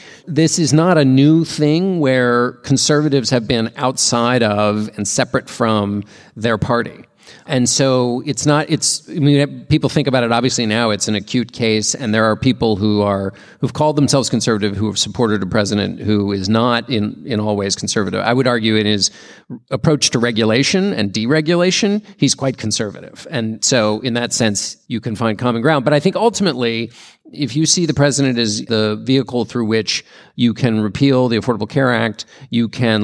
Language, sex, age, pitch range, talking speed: English, male, 40-59, 110-135 Hz, 190 wpm